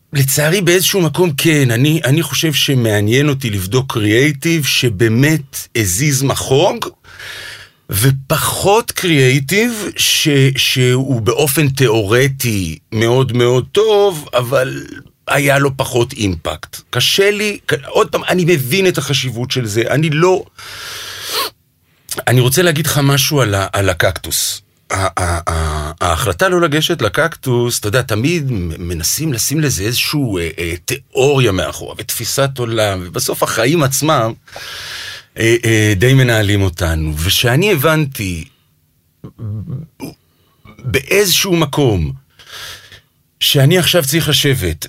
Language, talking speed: English, 115 wpm